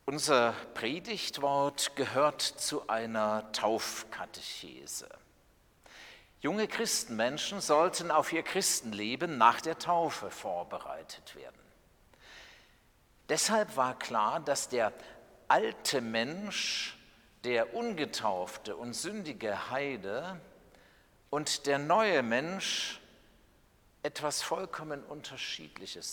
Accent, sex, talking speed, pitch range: German, male, 85 wpm, 115-170 Hz